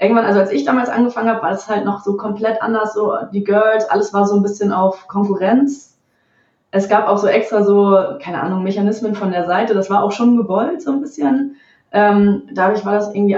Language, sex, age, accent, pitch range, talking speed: German, female, 20-39, German, 190-220 Hz, 220 wpm